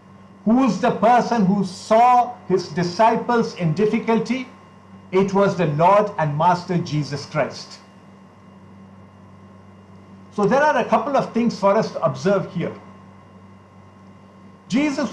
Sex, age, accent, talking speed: male, 60-79, Indian, 125 wpm